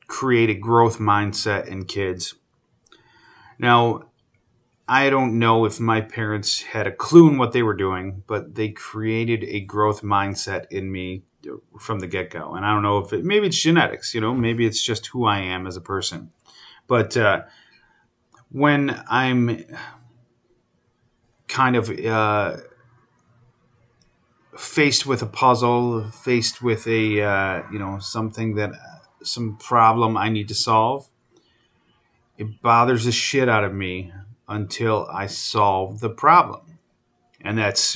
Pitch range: 100-120 Hz